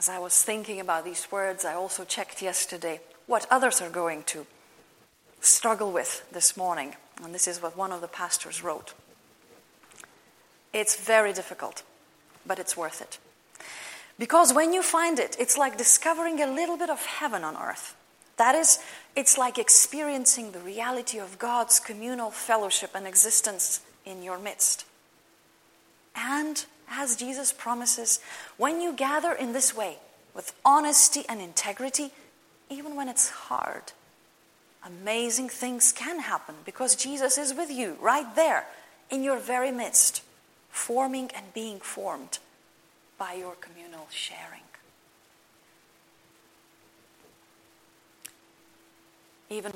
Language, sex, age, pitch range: English, female, 30-49, 190-275 Hz